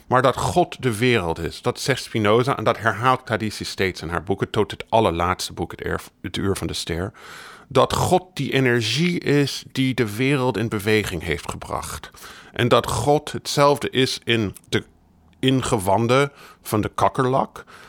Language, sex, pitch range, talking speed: Dutch, male, 100-130 Hz, 165 wpm